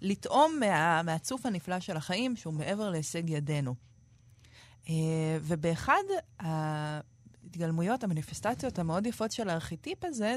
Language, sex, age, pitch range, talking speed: Hebrew, female, 30-49, 155-215 Hz, 110 wpm